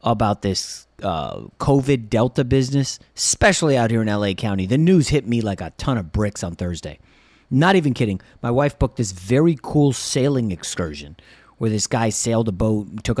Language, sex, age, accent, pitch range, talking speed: English, male, 30-49, American, 95-145 Hz, 190 wpm